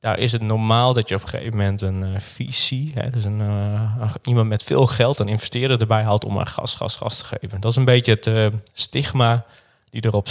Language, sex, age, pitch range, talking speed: Dutch, male, 20-39, 100-120 Hz, 240 wpm